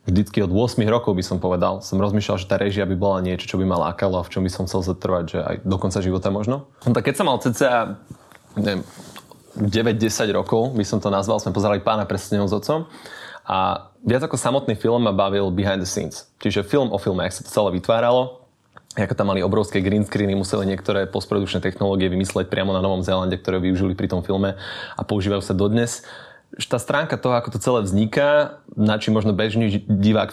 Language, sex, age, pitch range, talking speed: Slovak, male, 20-39, 95-115 Hz, 205 wpm